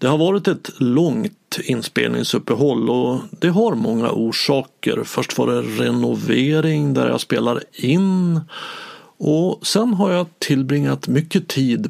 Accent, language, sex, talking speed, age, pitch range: Swedish, English, male, 130 wpm, 50-69, 130-190 Hz